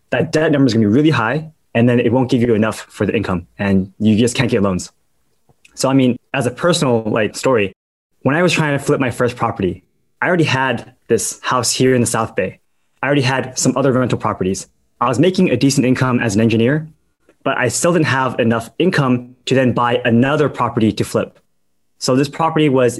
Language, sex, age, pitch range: English, male, 20-39, 115-135 Hz